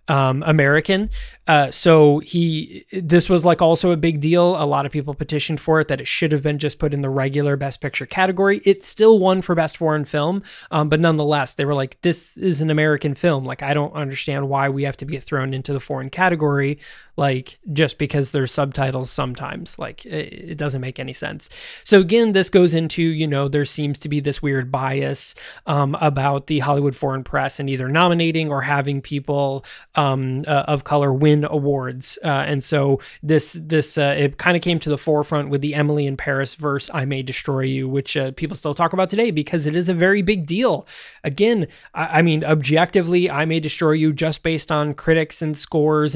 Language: English